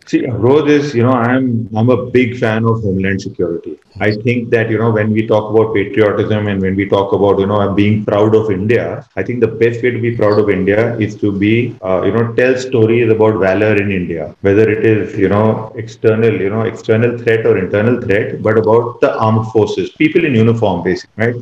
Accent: Indian